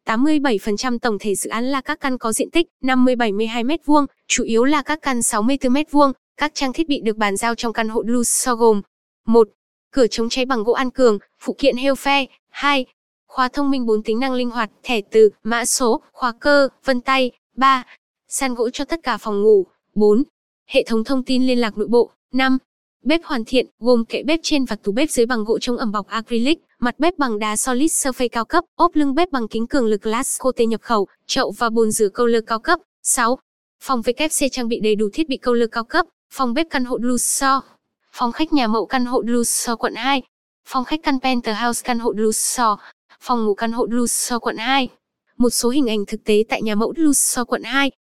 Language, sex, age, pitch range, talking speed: Vietnamese, female, 10-29, 230-270 Hz, 225 wpm